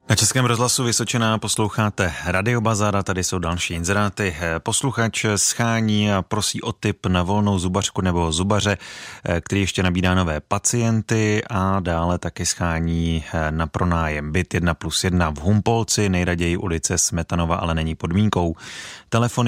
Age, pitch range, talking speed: 30-49, 90-110 Hz, 140 wpm